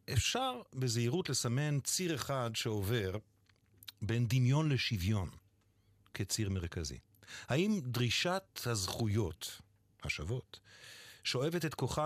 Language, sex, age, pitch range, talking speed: Hebrew, male, 50-69, 95-125 Hz, 90 wpm